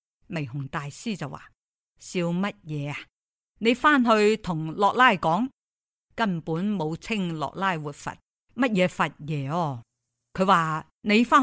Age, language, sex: 50-69, Chinese, female